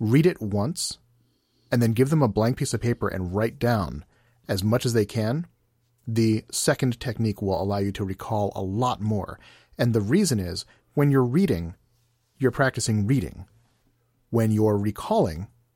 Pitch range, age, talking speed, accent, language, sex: 105-125 Hz, 40-59, 170 wpm, American, English, male